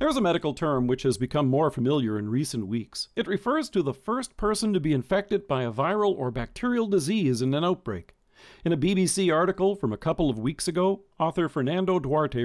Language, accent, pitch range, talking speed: English, American, 135-195 Hz, 205 wpm